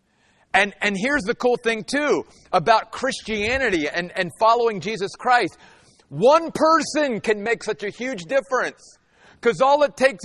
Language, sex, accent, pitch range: English, male, American, 200-255 Hz